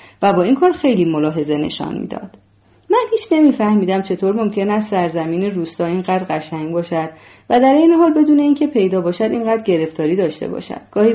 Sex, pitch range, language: female, 165-225 Hz, Persian